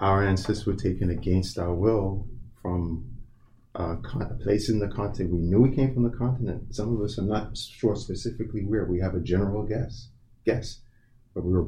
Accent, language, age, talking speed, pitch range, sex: American, English, 30-49, 195 wpm, 100-120 Hz, male